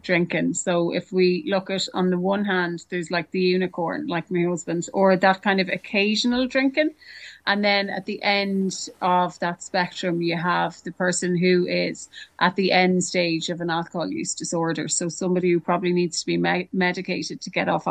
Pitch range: 175-200 Hz